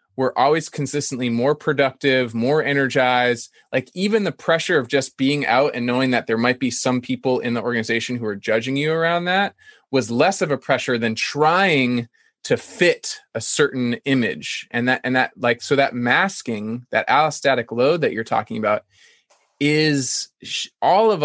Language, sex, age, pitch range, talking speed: English, male, 20-39, 125-160 Hz, 175 wpm